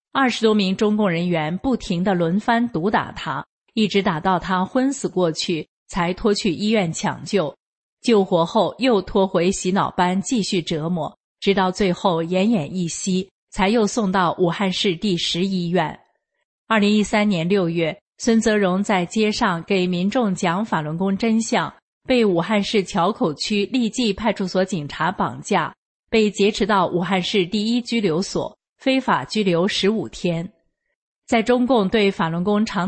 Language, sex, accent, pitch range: English, female, Chinese, 175-220 Hz